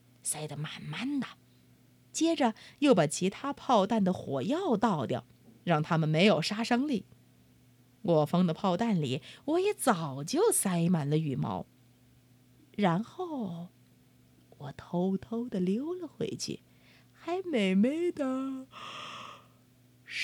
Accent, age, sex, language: native, 30-49, female, Chinese